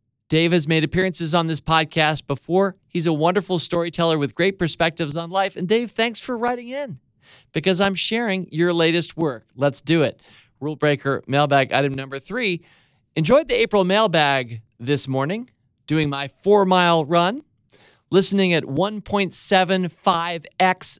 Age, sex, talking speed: 40-59, male, 145 wpm